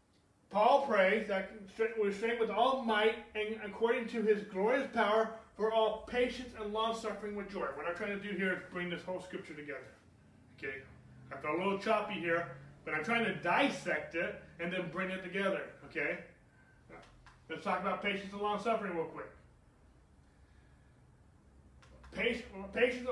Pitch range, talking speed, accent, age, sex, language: 155-210 Hz, 160 wpm, American, 30-49, male, English